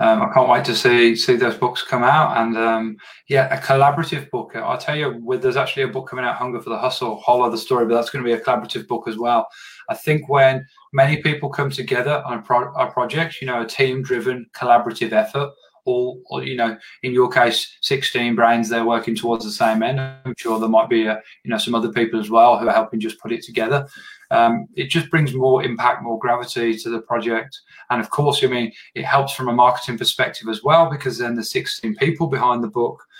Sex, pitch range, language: male, 120-150 Hz, English